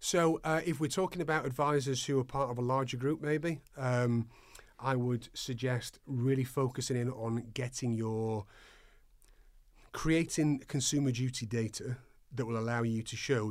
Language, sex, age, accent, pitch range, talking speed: English, male, 30-49, British, 110-135 Hz, 155 wpm